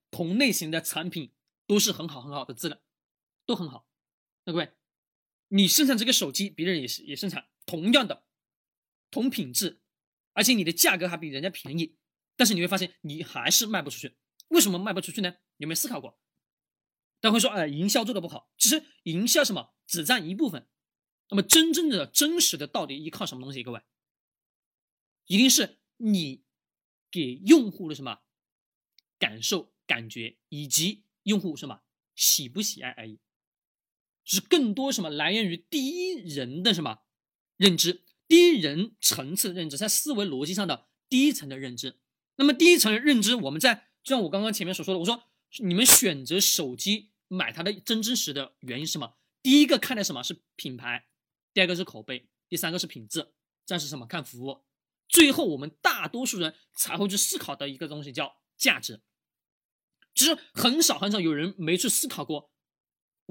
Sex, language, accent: male, Chinese, native